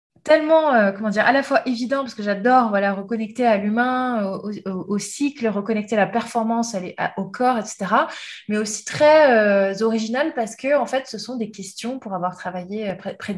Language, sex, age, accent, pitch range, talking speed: French, female, 20-39, French, 185-240 Hz, 200 wpm